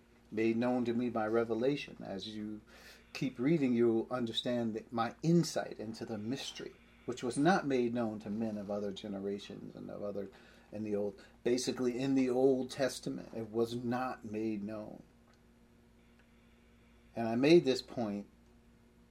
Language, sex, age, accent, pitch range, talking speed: English, male, 40-59, American, 115-155 Hz, 150 wpm